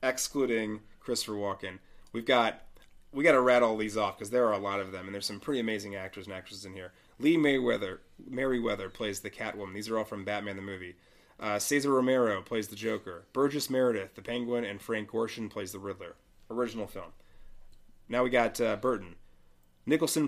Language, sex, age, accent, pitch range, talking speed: English, male, 30-49, American, 100-125 Hz, 190 wpm